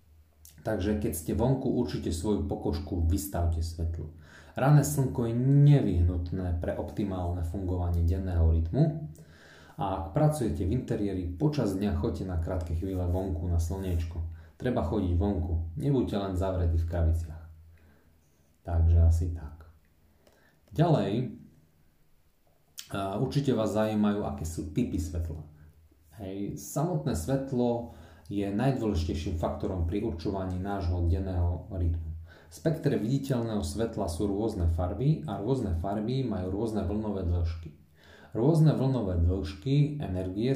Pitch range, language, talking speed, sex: 85-110 Hz, Slovak, 120 wpm, male